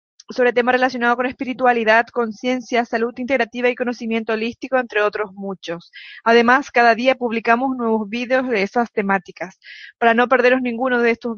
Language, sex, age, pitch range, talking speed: Spanish, female, 20-39, 220-250 Hz, 155 wpm